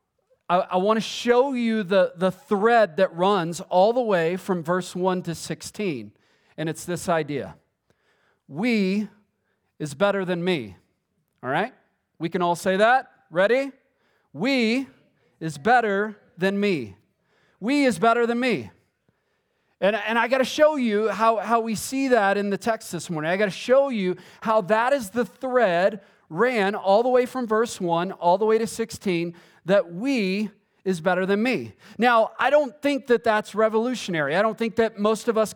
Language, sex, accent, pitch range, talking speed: English, male, American, 190-240 Hz, 175 wpm